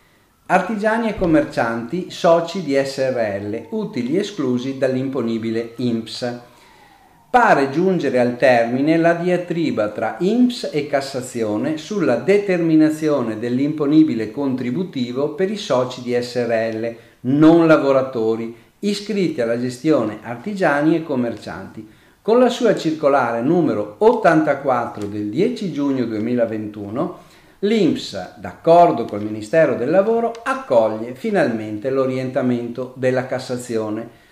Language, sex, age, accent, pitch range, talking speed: Italian, male, 40-59, native, 120-185 Hz, 100 wpm